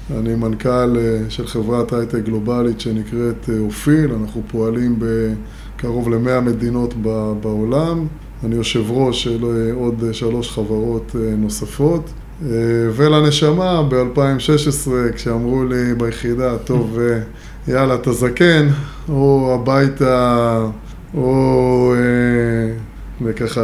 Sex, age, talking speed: male, 20-39, 90 wpm